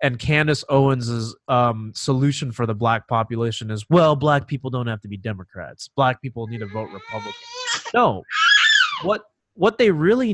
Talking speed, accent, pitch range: 170 wpm, American, 125-185 Hz